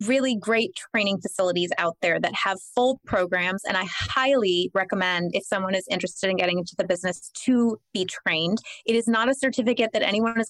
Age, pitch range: 20-39, 195-245 Hz